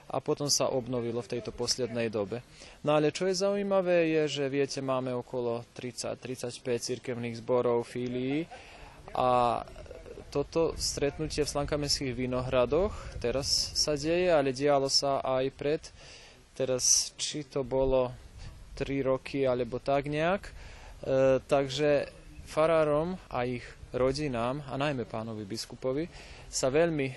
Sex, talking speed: male, 125 wpm